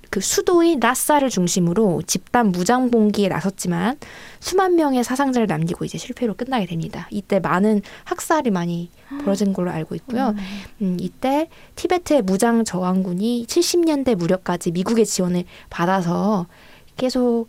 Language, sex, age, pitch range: Korean, female, 20-39, 190-265 Hz